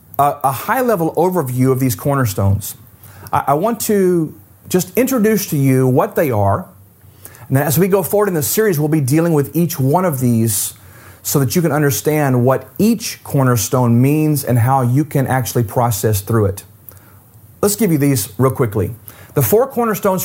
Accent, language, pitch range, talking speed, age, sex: American, English, 110-160 Hz, 175 wpm, 40-59, male